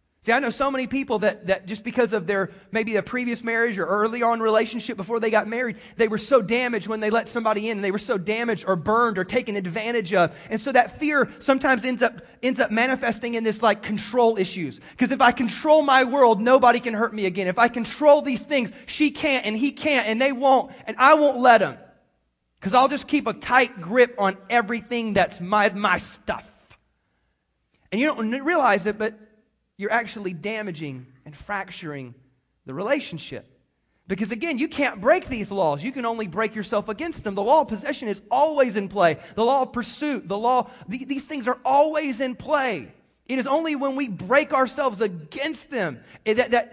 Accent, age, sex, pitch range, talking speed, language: American, 30-49, male, 200-255 Hz, 205 wpm, English